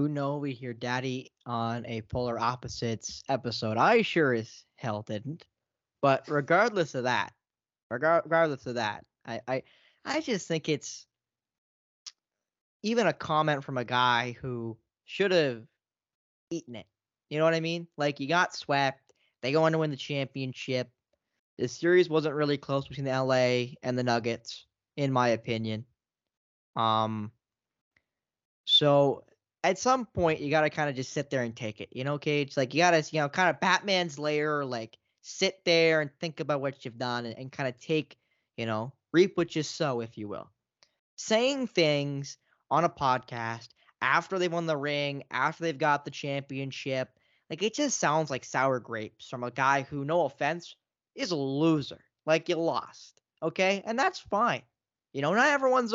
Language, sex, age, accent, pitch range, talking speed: English, male, 10-29, American, 120-165 Hz, 175 wpm